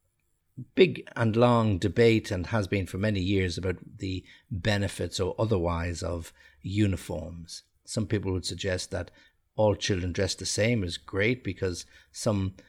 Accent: Irish